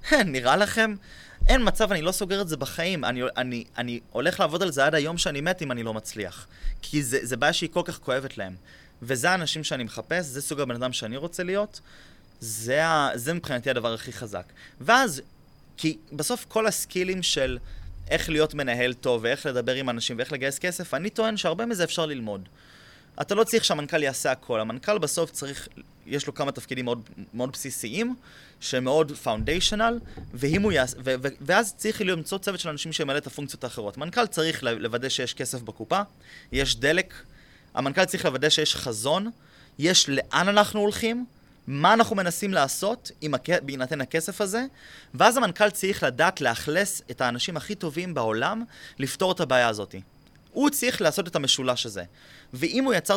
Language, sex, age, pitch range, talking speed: Hebrew, male, 20-39, 130-195 Hz, 170 wpm